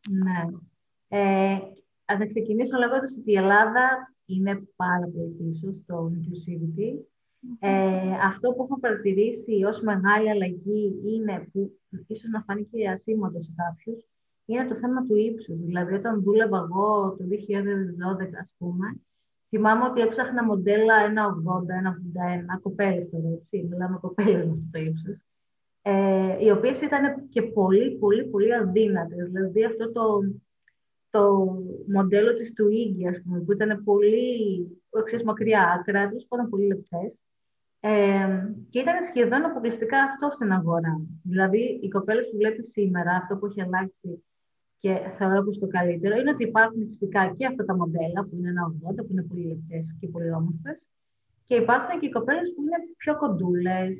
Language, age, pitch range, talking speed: Greek, 20-39, 185-225 Hz, 145 wpm